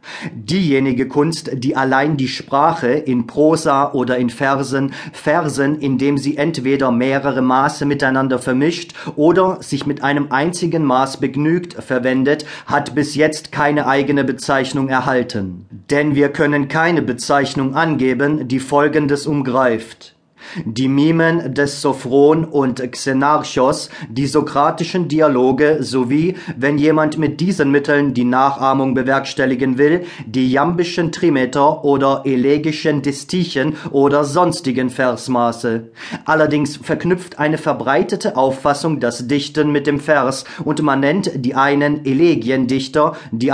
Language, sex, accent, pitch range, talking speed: German, male, German, 130-150 Hz, 120 wpm